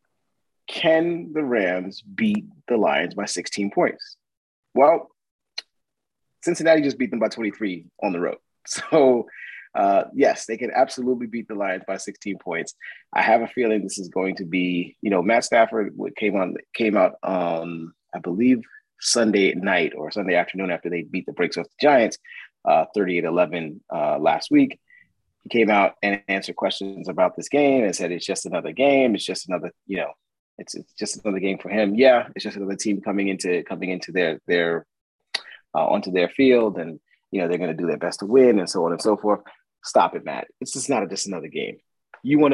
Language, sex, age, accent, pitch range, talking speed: English, male, 30-49, American, 95-150 Hz, 200 wpm